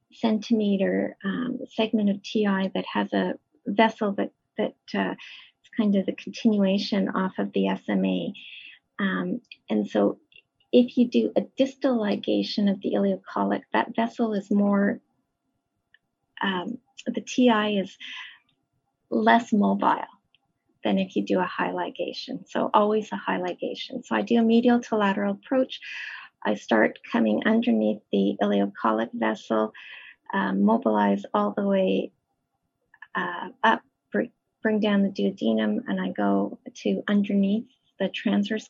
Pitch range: 185-220 Hz